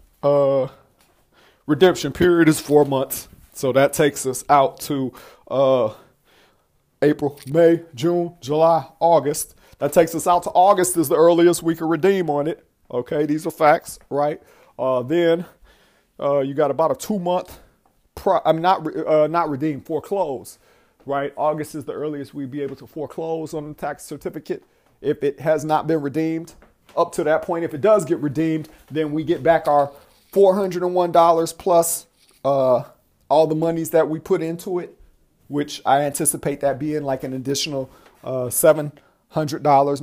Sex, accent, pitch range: male, American, 140-165 Hz